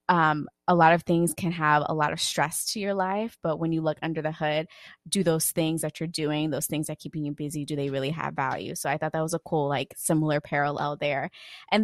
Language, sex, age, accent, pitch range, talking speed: English, female, 20-39, American, 150-180 Hz, 255 wpm